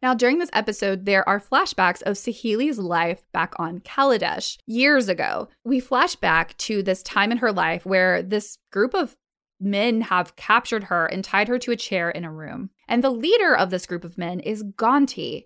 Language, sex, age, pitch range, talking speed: English, female, 20-39, 185-235 Hz, 195 wpm